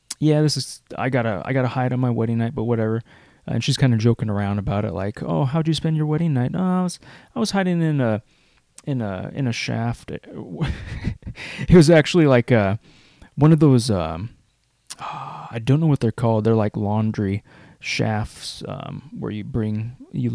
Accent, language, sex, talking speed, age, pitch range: American, English, male, 210 wpm, 20-39, 110-135 Hz